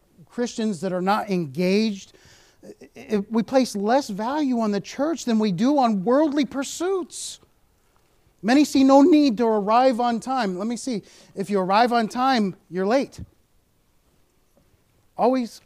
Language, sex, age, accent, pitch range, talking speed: English, male, 40-59, American, 170-235 Hz, 140 wpm